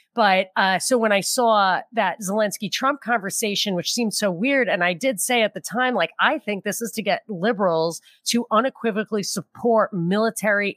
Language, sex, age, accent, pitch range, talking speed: English, female, 30-49, American, 180-220 Hz, 180 wpm